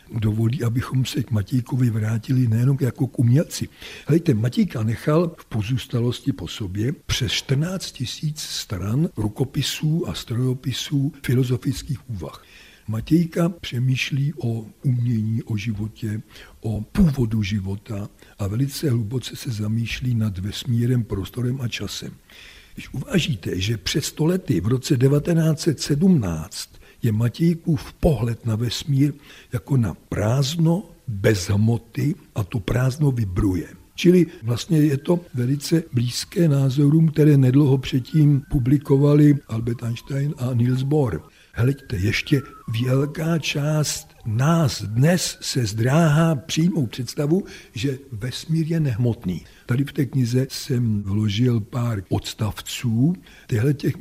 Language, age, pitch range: Czech, 60-79, 115-150 Hz